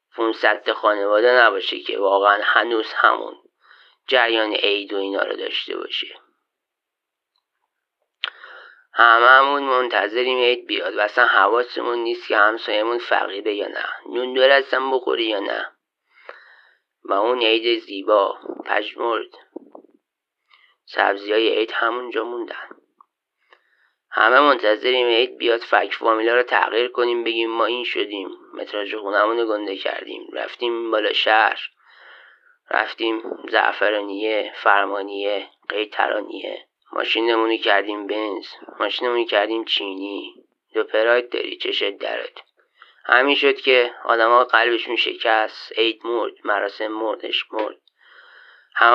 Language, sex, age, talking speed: Persian, male, 30-49, 115 wpm